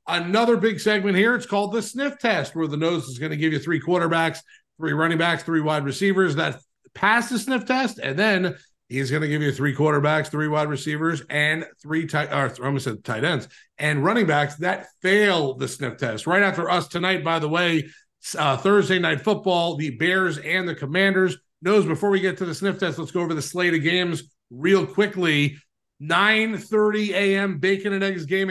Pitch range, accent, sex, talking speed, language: 155-195 Hz, American, male, 200 wpm, English